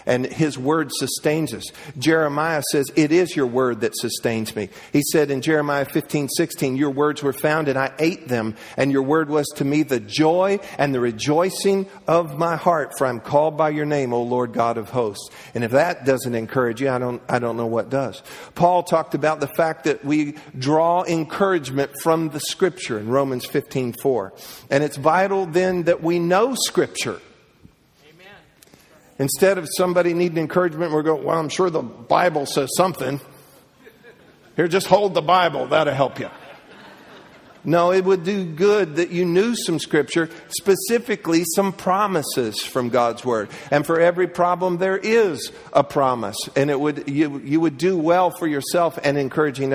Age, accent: 50-69, American